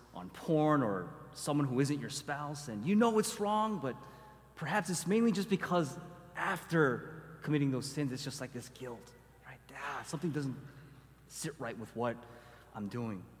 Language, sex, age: English, male, 30-49